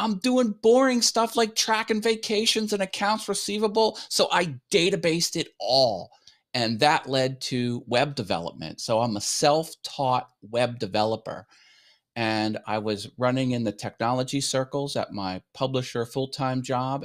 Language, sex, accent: English, male, American